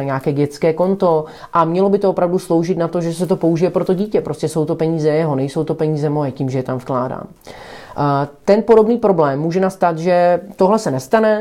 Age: 30-49